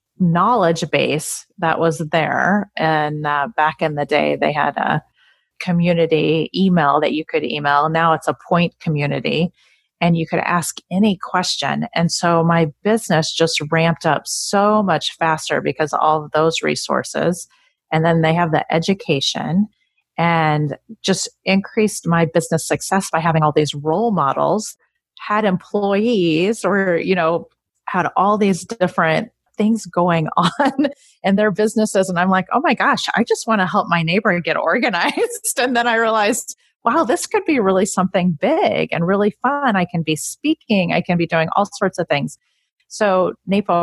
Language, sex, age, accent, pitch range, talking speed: English, female, 30-49, American, 160-200 Hz, 170 wpm